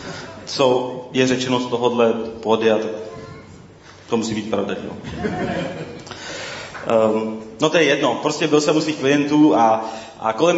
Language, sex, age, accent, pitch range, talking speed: Czech, male, 20-39, native, 115-140 Hz, 130 wpm